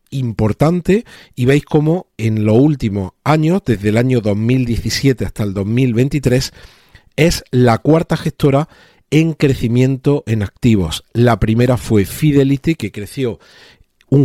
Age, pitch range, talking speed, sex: 40-59, 105-135 Hz, 125 wpm, male